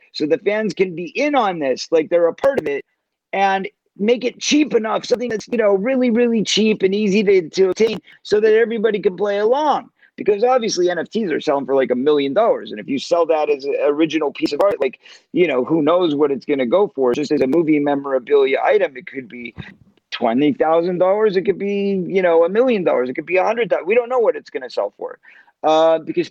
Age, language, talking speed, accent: 40-59, English, 235 wpm, American